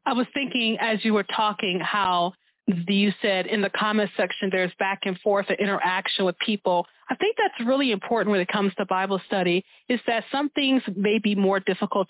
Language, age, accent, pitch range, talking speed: English, 30-49, American, 185-225 Hz, 205 wpm